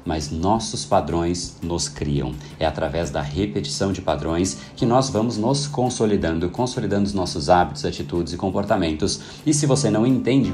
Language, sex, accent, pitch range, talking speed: Portuguese, male, Brazilian, 90-125 Hz, 160 wpm